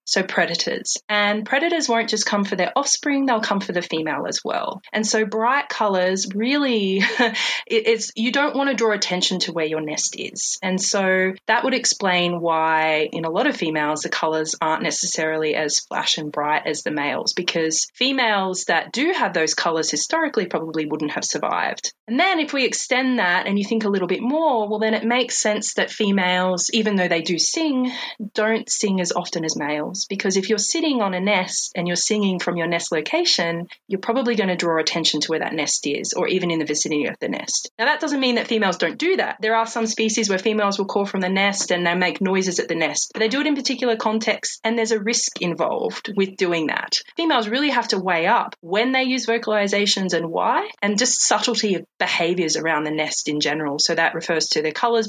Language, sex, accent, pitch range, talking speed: English, female, Australian, 170-230 Hz, 220 wpm